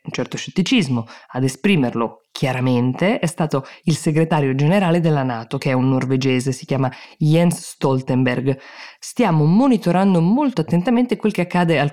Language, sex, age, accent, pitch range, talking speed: Italian, female, 20-39, native, 130-180 Hz, 145 wpm